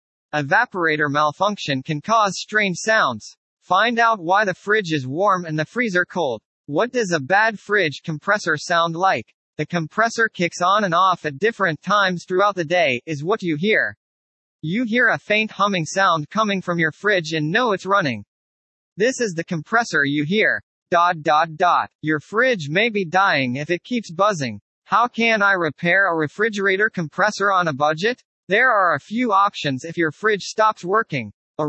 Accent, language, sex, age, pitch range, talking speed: American, English, male, 40-59, 155-210 Hz, 180 wpm